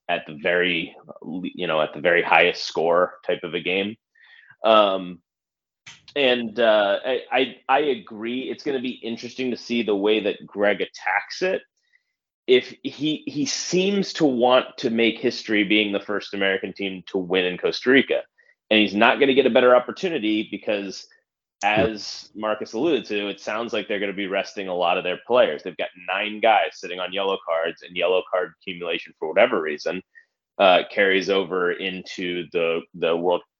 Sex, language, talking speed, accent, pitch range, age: male, English, 180 wpm, American, 95-135 Hz, 30-49